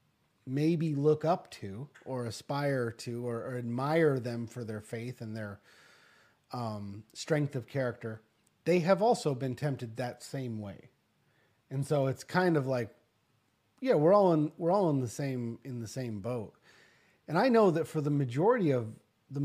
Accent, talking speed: American, 175 wpm